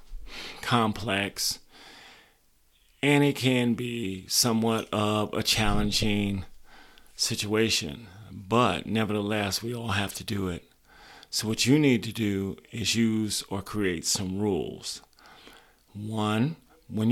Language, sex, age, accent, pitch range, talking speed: English, male, 40-59, American, 100-115 Hz, 110 wpm